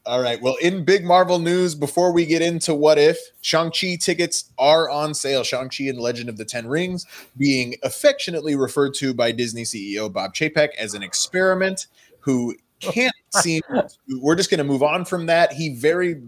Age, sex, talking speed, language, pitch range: 20-39, male, 190 wpm, English, 115-160 Hz